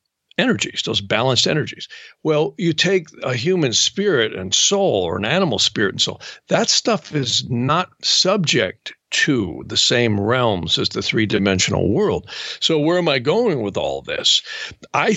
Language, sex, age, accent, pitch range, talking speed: English, male, 50-69, American, 110-155 Hz, 160 wpm